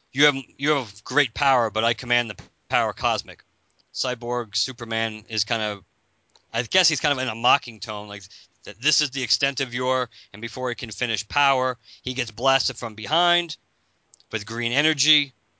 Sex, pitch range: male, 105-130 Hz